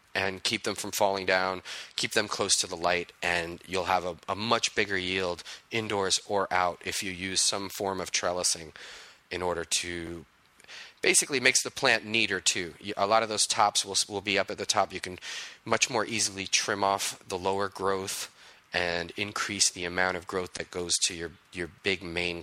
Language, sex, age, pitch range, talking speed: English, male, 30-49, 90-110 Hz, 200 wpm